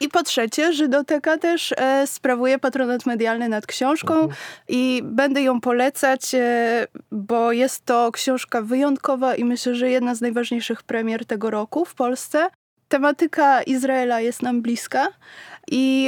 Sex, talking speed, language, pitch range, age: female, 140 wpm, Polish, 235-270 Hz, 20-39